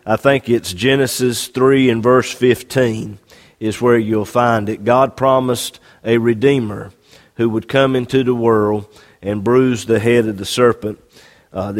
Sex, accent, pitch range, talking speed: male, American, 110-130 Hz, 160 wpm